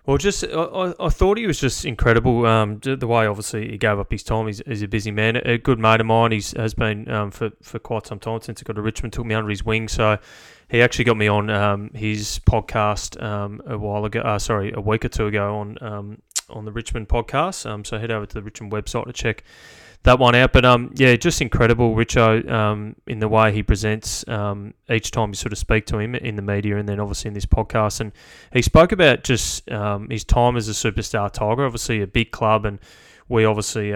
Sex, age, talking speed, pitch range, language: male, 20-39, 240 wpm, 105-115 Hz, English